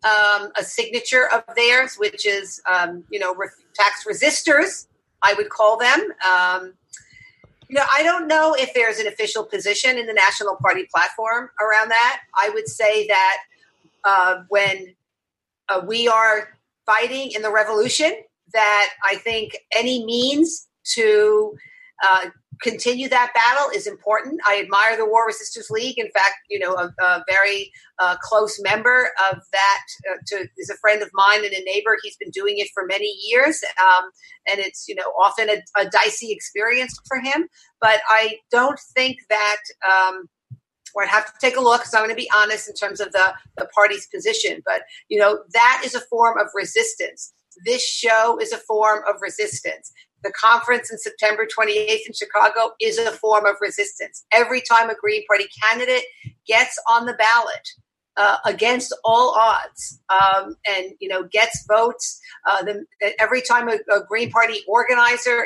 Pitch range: 205-250 Hz